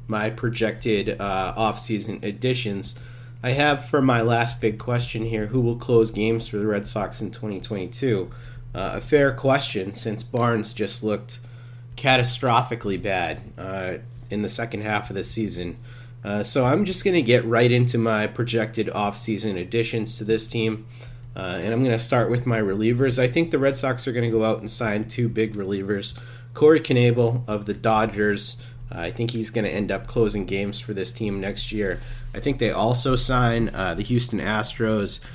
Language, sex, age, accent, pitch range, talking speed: English, male, 30-49, American, 105-120 Hz, 185 wpm